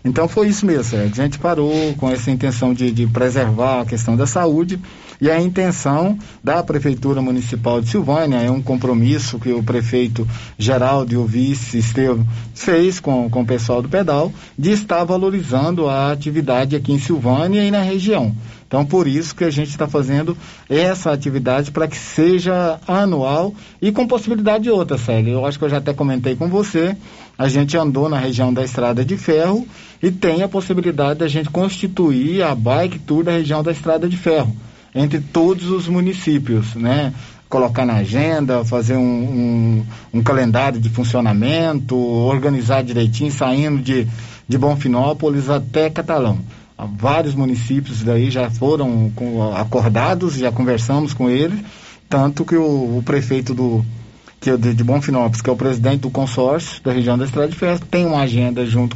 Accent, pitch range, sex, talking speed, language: Brazilian, 125-165 Hz, male, 170 wpm, Portuguese